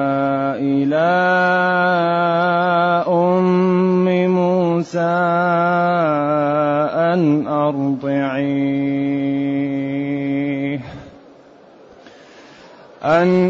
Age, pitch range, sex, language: 30-49, 150-185 Hz, male, Arabic